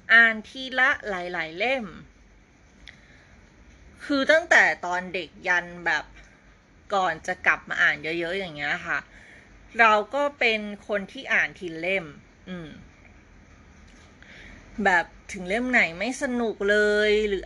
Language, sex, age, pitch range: Thai, female, 20-39, 180-230 Hz